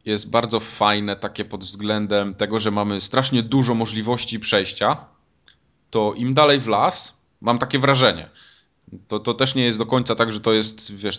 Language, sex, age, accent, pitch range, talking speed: Polish, male, 20-39, native, 100-125 Hz, 175 wpm